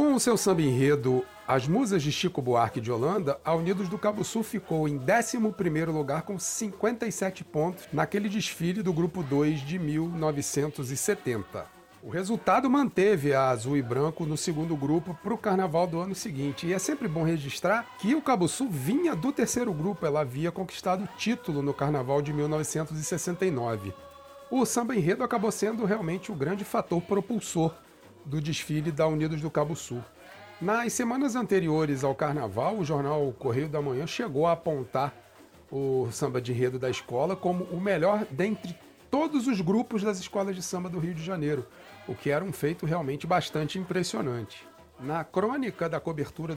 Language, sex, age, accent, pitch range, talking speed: English, male, 40-59, Brazilian, 140-200 Hz, 170 wpm